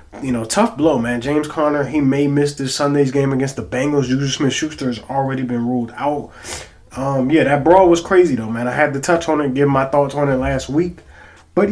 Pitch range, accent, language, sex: 125-165 Hz, American, English, male